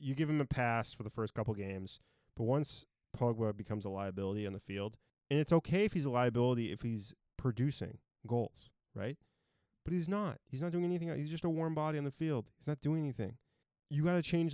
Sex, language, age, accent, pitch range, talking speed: male, English, 20-39, American, 105-130 Hz, 225 wpm